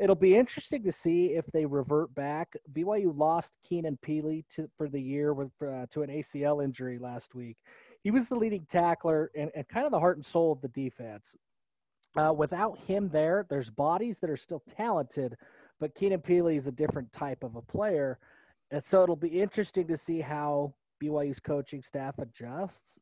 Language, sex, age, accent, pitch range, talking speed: English, male, 30-49, American, 140-165 Hz, 190 wpm